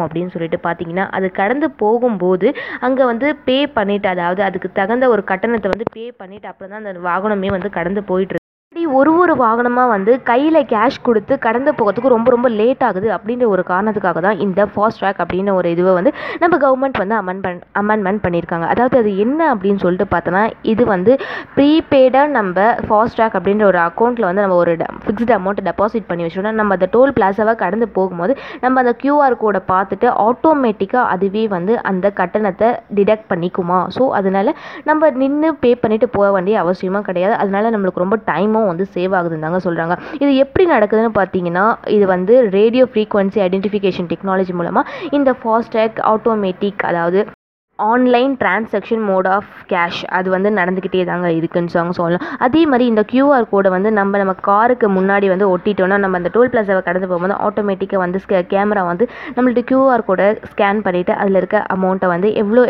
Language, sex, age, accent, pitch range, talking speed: Tamil, female, 20-39, native, 185-240 Hz, 135 wpm